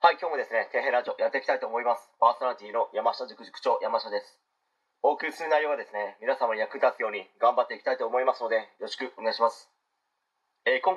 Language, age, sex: Japanese, 40-59, male